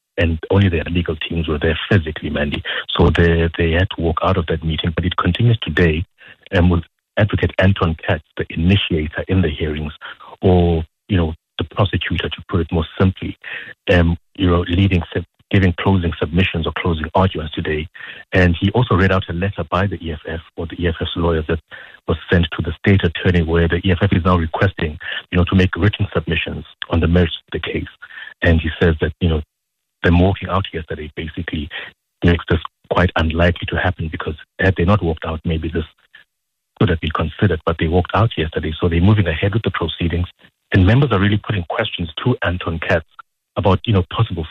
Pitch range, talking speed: 85-95 Hz, 200 wpm